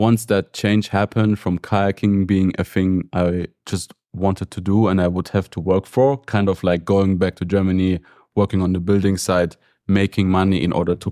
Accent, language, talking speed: German, English, 205 wpm